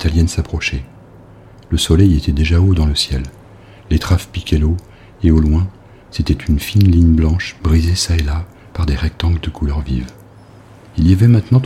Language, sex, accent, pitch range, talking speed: French, male, French, 75-100 Hz, 185 wpm